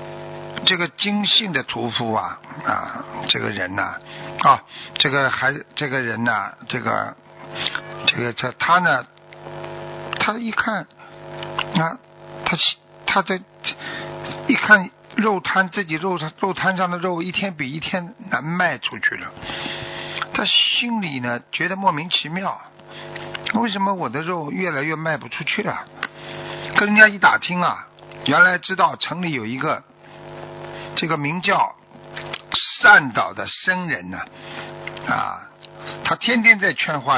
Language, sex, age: Chinese, male, 50-69